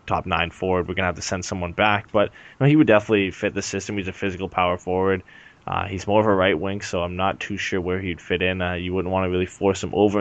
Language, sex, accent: English, male, American